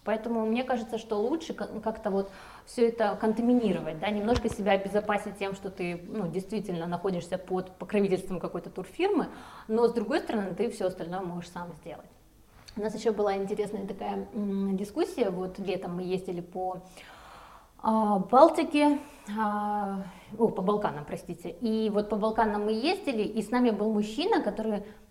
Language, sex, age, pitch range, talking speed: Russian, female, 20-39, 190-230 Hz, 150 wpm